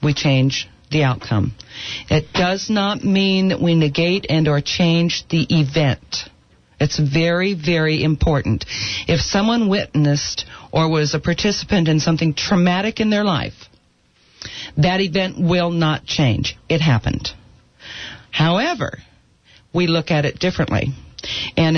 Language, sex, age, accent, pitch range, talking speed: English, female, 50-69, American, 140-185 Hz, 130 wpm